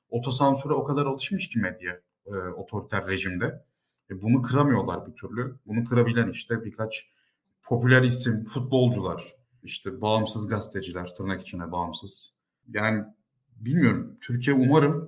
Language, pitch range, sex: Turkish, 110-130 Hz, male